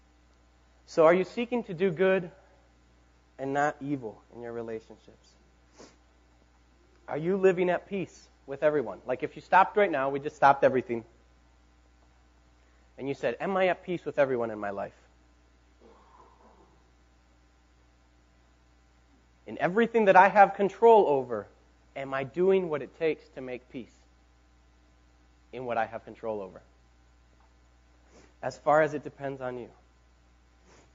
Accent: American